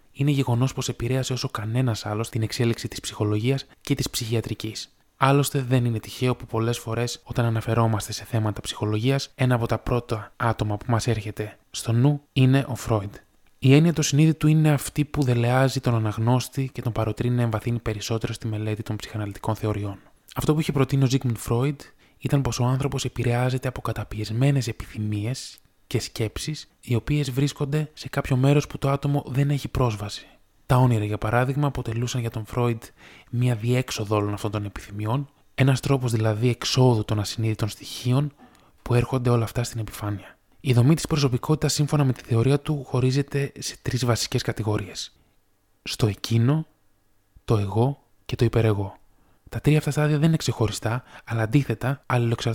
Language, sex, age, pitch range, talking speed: Greek, male, 20-39, 110-135 Hz, 165 wpm